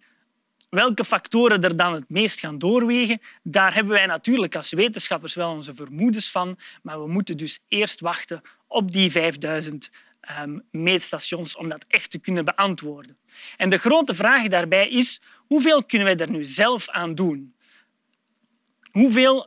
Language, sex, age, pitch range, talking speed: Dutch, male, 30-49, 170-230 Hz, 155 wpm